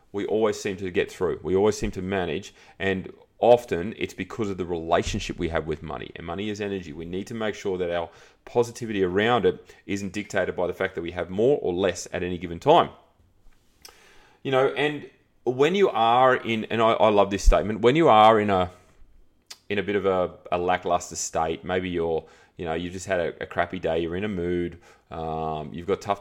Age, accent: 30-49, Australian